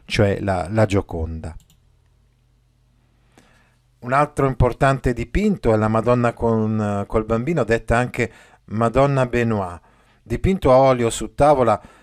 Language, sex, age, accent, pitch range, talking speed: Italian, male, 50-69, native, 110-140 Hz, 120 wpm